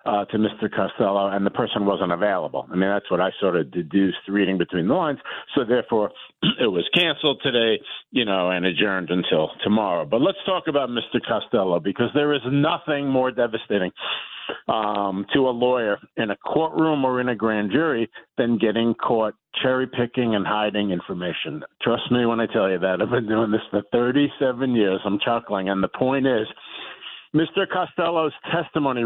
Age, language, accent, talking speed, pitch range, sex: 50-69, English, American, 180 wpm, 110-145 Hz, male